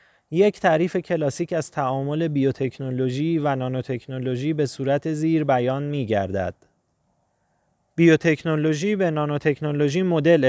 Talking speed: 95 wpm